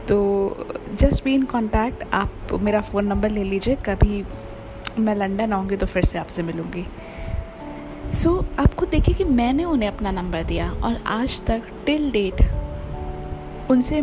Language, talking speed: Hindi, 155 wpm